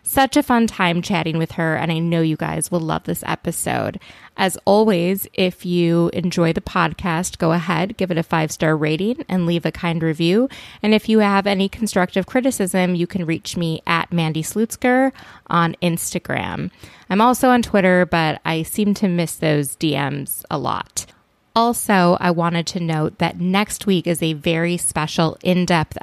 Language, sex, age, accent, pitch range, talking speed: English, female, 20-39, American, 165-200 Hz, 180 wpm